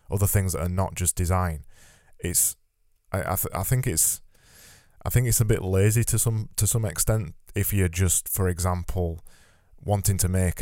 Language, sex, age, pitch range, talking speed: English, male, 10-29, 90-105 Hz, 185 wpm